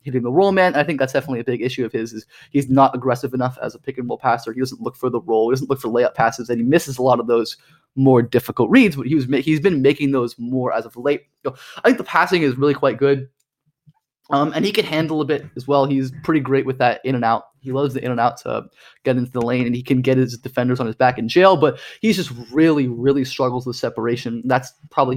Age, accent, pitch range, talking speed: 20-39, American, 125-145 Hz, 265 wpm